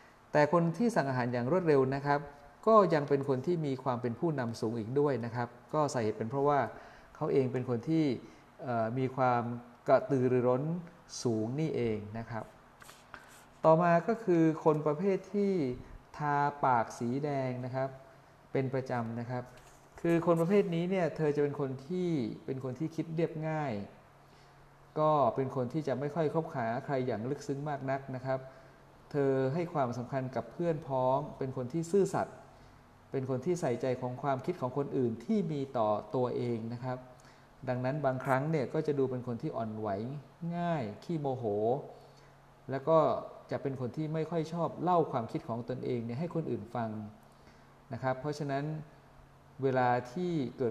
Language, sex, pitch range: Thai, male, 125-155 Hz